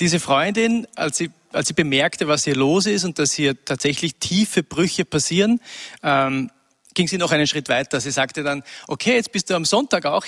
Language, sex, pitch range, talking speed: German, male, 145-185 Hz, 205 wpm